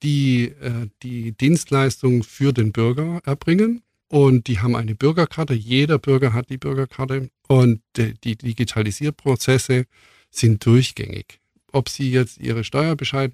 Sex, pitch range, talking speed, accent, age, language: male, 110-140 Hz, 130 wpm, German, 50-69, German